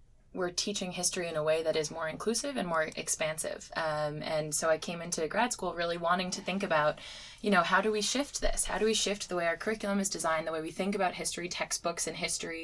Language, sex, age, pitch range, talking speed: English, female, 20-39, 155-195 Hz, 245 wpm